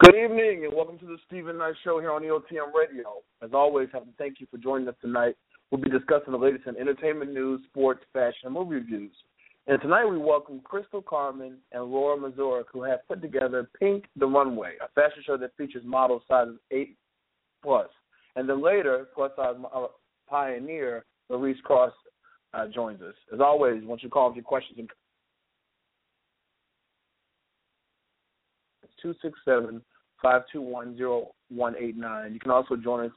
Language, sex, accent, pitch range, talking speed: English, male, American, 120-150 Hz, 160 wpm